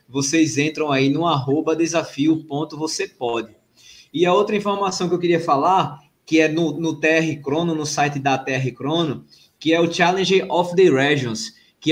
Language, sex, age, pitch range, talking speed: Portuguese, male, 20-39, 145-185 Hz, 165 wpm